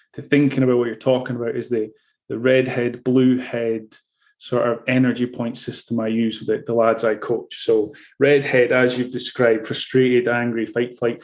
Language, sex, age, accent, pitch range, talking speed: English, male, 20-39, British, 120-135 Hz, 180 wpm